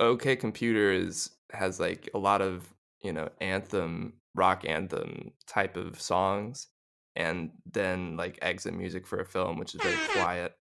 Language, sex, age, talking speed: English, male, 20-39, 155 wpm